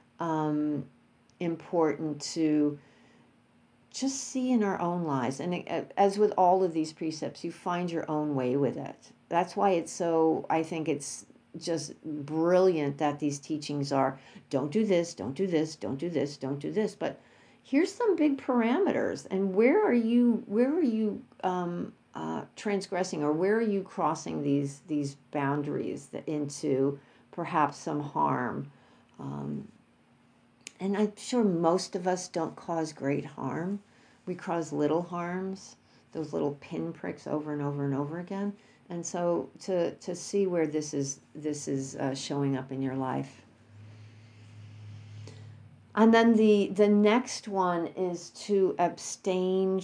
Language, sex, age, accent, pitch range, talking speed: English, female, 50-69, American, 145-190 Hz, 150 wpm